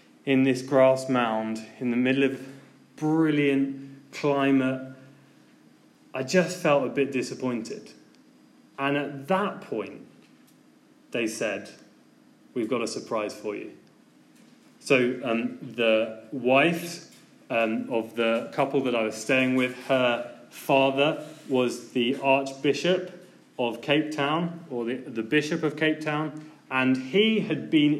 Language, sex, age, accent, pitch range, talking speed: English, male, 20-39, British, 125-150 Hz, 130 wpm